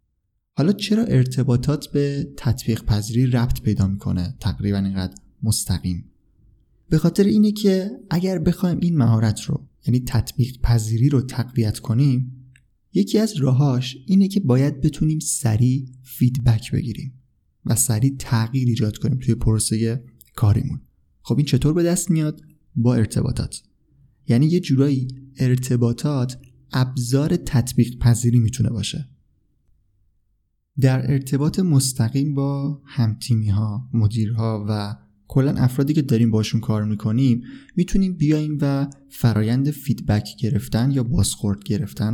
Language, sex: Persian, male